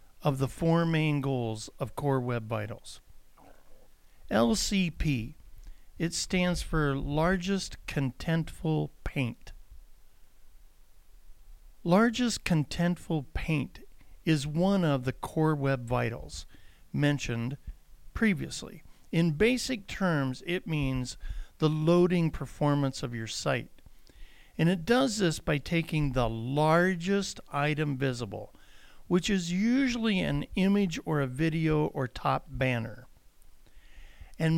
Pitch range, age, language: 125-170 Hz, 50-69, English